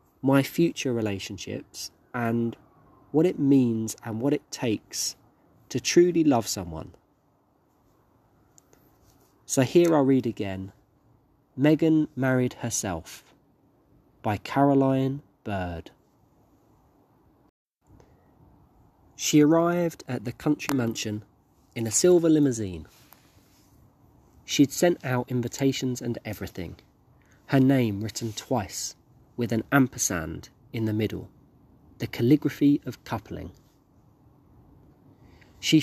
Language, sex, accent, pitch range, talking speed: English, male, British, 100-140 Hz, 95 wpm